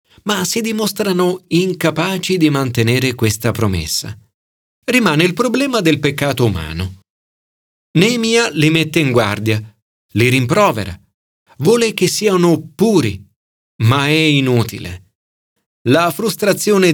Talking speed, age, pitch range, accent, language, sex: 105 wpm, 40-59, 105-160 Hz, native, Italian, male